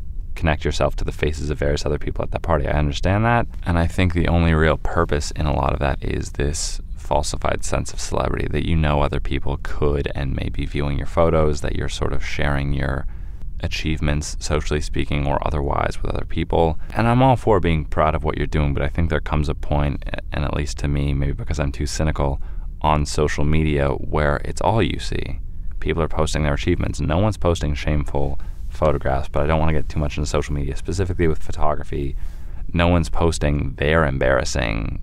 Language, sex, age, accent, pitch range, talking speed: English, male, 20-39, American, 70-80 Hz, 210 wpm